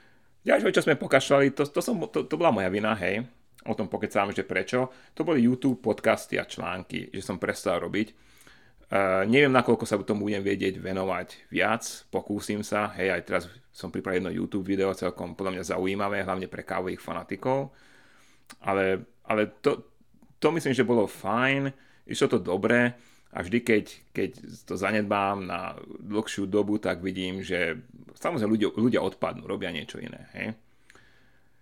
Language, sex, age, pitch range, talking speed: Slovak, male, 30-49, 95-120 Hz, 165 wpm